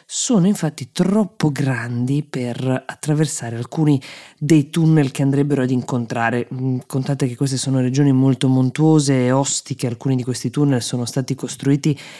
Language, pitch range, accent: Italian, 130-155 Hz, native